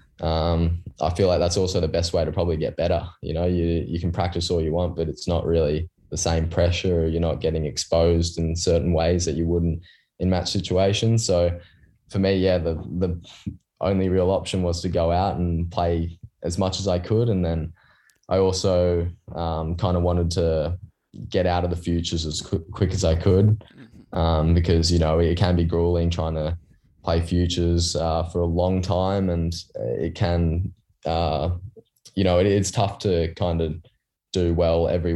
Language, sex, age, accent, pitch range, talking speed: English, male, 10-29, Australian, 80-90 Hz, 195 wpm